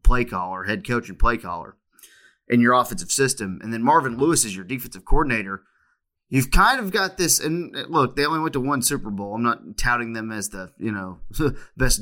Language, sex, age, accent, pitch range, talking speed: English, male, 30-49, American, 105-145 Hz, 210 wpm